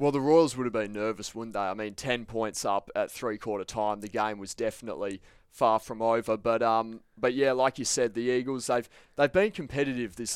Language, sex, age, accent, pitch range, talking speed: English, male, 20-39, Australian, 110-125 Hz, 225 wpm